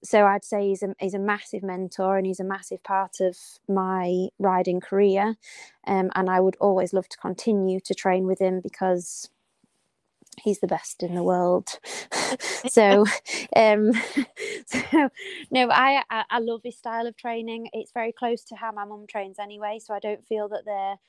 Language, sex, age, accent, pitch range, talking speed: English, female, 20-39, British, 190-220 Hz, 180 wpm